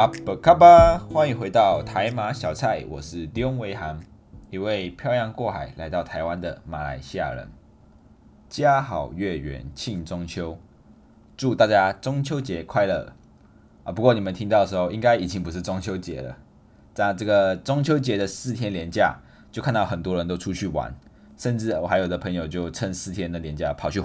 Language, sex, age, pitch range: Chinese, male, 20-39, 85-105 Hz